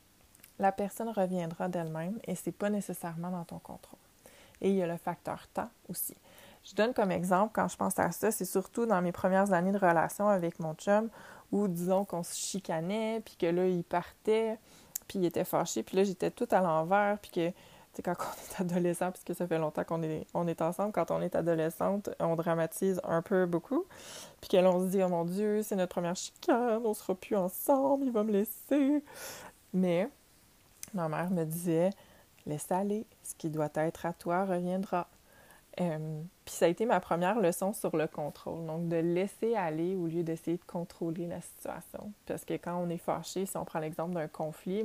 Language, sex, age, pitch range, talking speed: French, female, 20-39, 170-200 Hz, 200 wpm